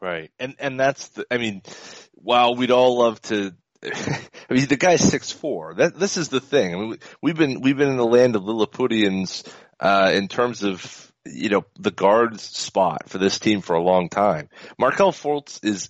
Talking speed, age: 200 wpm, 30-49